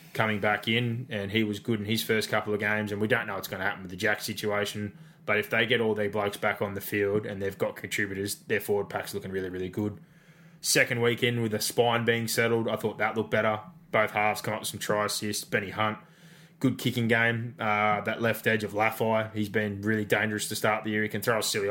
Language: English